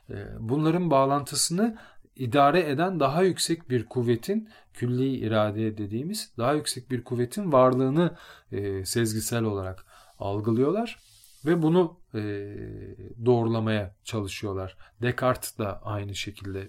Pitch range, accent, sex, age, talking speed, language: 105-140 Hz, native, male, 40-59, 105 wpm, Turkish